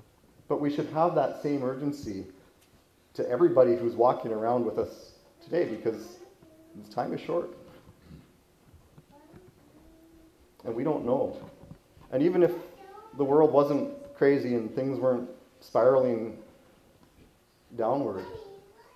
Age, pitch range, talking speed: 30-49, 120-170 Hz, 110 wpm